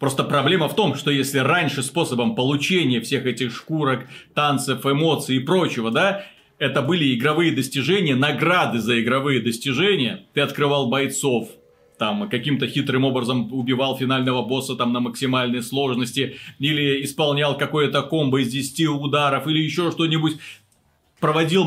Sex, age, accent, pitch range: male, 30-49, native, 130-170 Hz